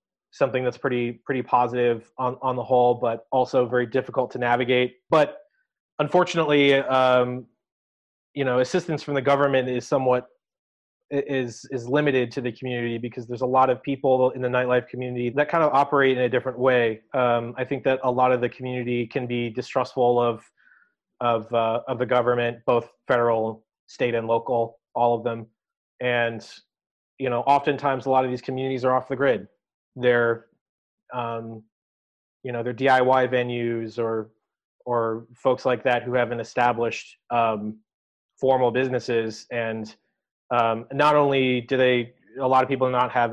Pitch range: 120-135 Hz